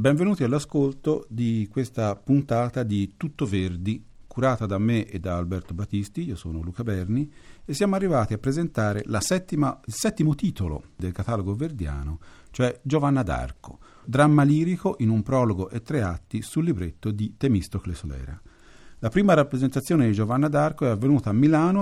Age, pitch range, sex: 50-69, 100-150 Hz, male